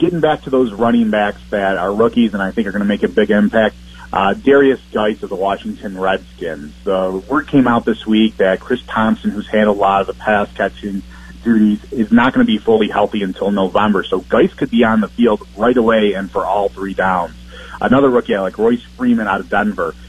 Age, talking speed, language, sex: 30-49, 225 wpm, English, male